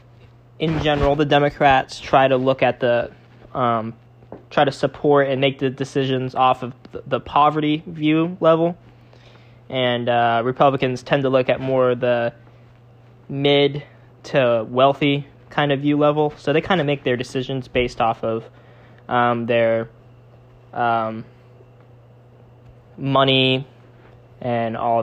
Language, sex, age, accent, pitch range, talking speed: English, male, 10-29, American, 120-145 Hz, 135 wpm